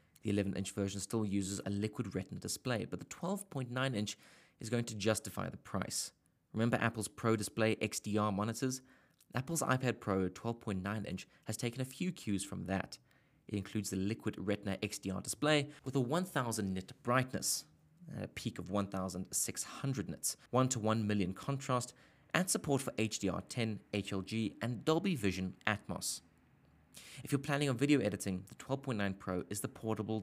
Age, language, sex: 20-39, English, male